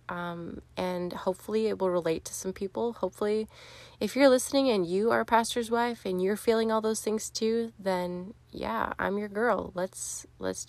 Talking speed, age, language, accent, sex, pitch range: 185 wpm, 20-39, English, American, female, 175-220 Hz